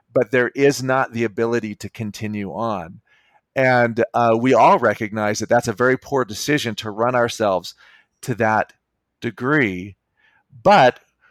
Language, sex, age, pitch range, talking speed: English, male, 40-59, 110-140 Hz, 145 wpm